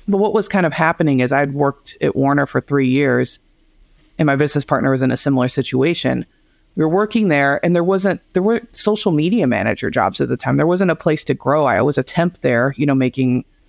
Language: English